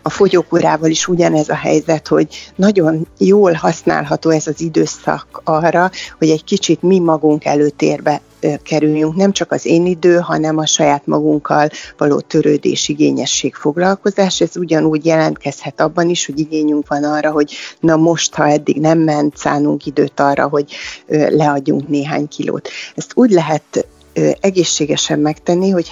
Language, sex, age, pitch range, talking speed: Hungarian, female, 30-49, 150-175 Hz, 145 wpm